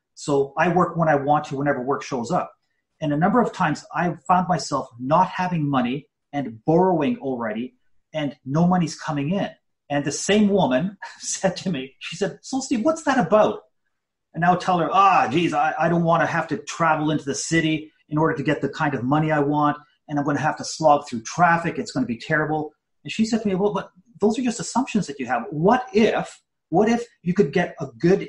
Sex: male